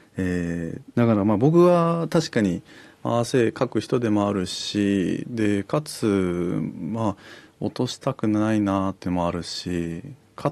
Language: Japanese